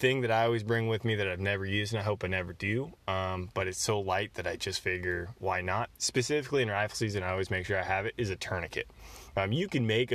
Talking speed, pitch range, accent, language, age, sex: 270 wpm, 95-115 Hz, American, English, 20-39, male